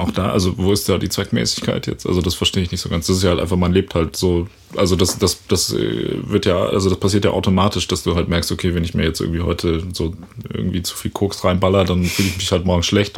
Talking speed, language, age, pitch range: 275 wpm, German, 30-49, 85-100 Hz